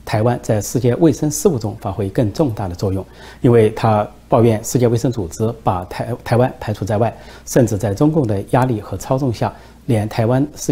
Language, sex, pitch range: Chinese, male, 100-125 Hz